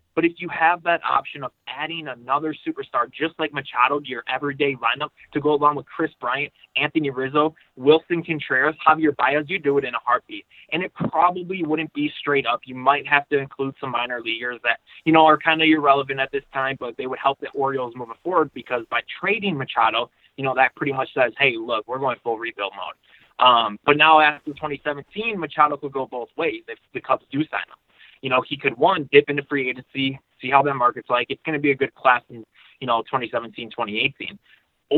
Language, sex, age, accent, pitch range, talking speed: English, male, 20-39, American, 130-155 Hz, 220 wpm